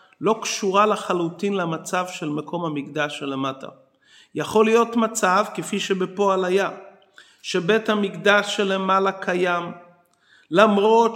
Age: 40-59